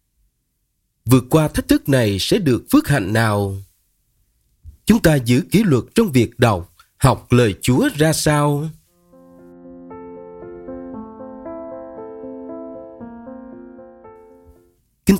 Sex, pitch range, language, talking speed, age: male, 105-155 Hz, Vietnamese, 95 wpm, 30-49